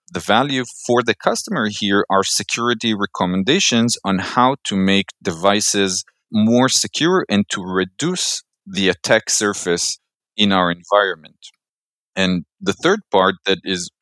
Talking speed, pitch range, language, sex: 135 wpm, 95-120 Hz, English, male